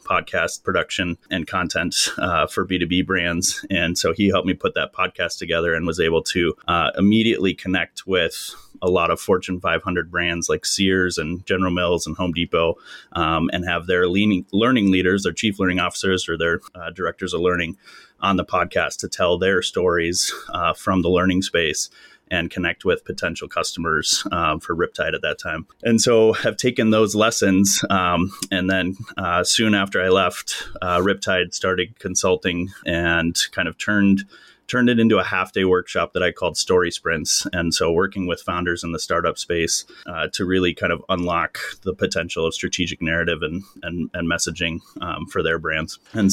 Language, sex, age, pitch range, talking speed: English, male, 30-49, 85-105 Hz, 185 wpm